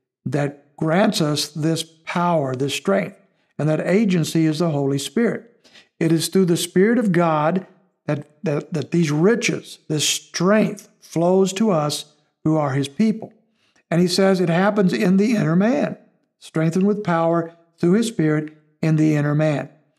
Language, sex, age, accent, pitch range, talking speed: English, male, 60-79, American, 150-185 Hz, 160 wpm